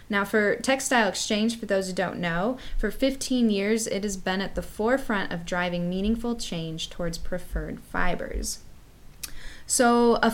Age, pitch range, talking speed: 10-29, 170-220 Hz, 155 wpm